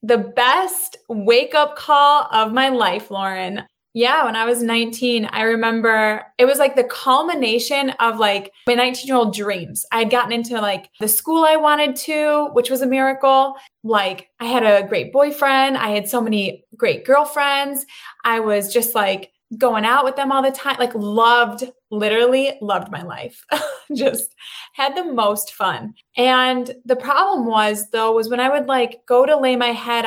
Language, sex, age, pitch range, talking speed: English, female, 20-39, 225-270 Hz, 180 wpm